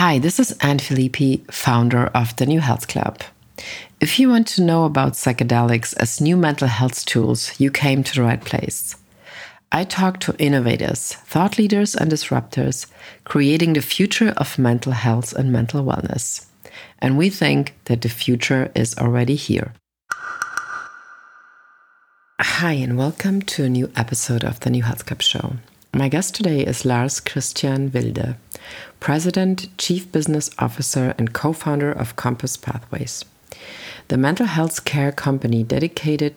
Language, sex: English, female